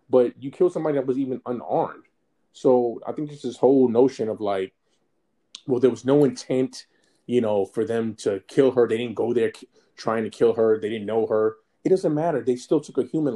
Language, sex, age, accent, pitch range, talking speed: English, male, 20-39, American, 105-130 Hz, 225 wpm